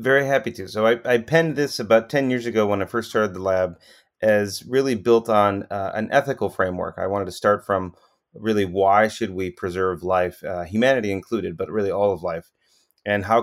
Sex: male